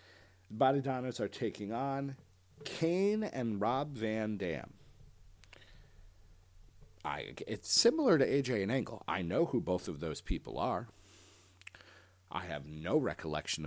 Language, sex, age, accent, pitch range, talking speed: English, male, 40-59, American, 90-115 Hz, 125 wpm